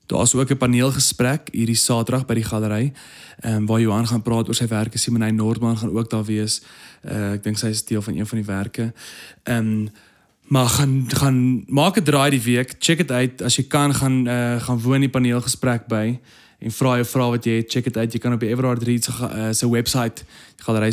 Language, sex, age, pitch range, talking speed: English, male, 20-39, 110-130 Hz, 220 wpm